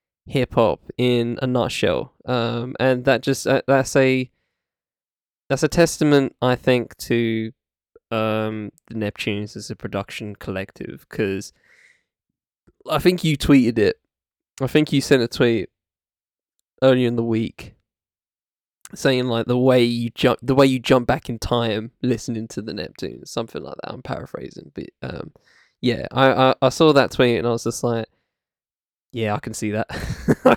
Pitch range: 120-150 Hz